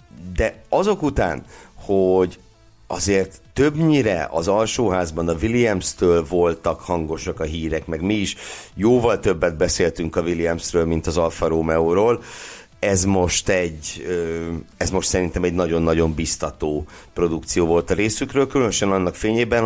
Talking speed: 130 wpm